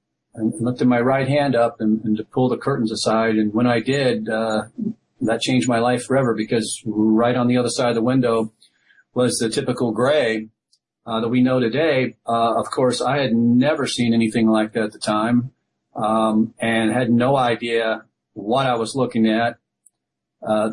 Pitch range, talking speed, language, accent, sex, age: 110-130 Hz, 190 wpm, English, American, male, 40-59